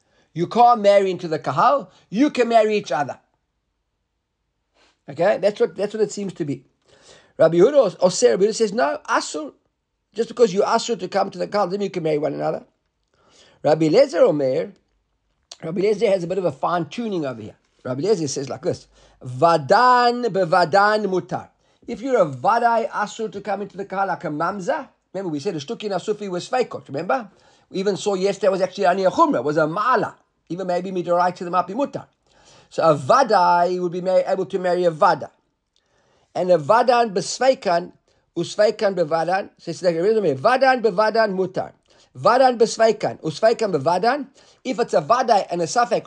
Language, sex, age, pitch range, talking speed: English, male, 50-69, 170-230 Hz, 195 wpm